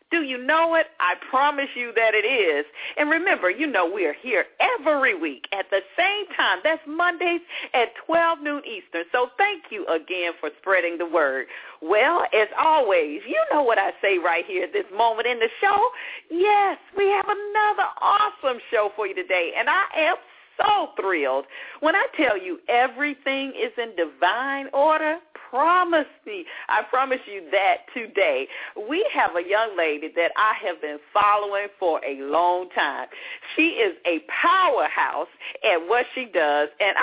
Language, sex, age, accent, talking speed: English, female, 50-69, American, 170 wpm